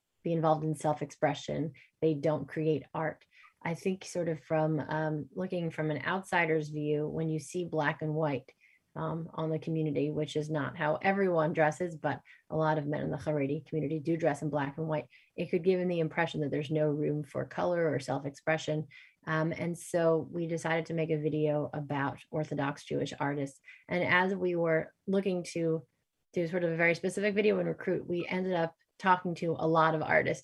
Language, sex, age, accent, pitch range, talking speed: English, female, 30-49, American, 150-170 Hz, 195 wpm